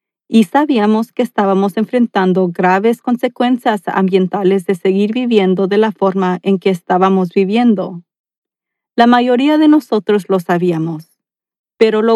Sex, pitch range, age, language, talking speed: female, 185-225 Hz, 40-59, Spanish, 130 wpm